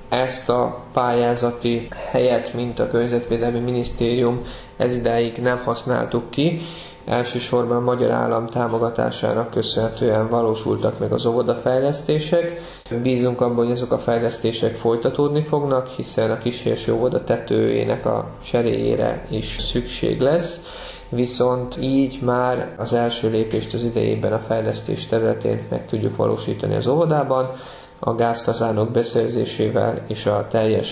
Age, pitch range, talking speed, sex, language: 20-39, 115-125 Hz, 120 wpm, male, Hungarian